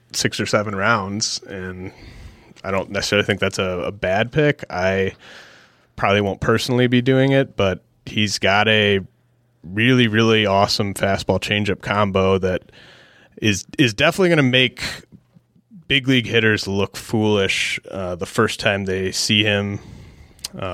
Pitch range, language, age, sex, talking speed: 95-115 Hz, English, 30-49, male, 150 wpm